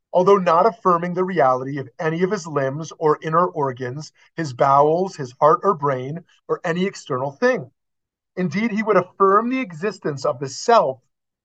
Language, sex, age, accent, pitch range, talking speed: English, male, 30-49, American, 145-205 Hz, 170 wpm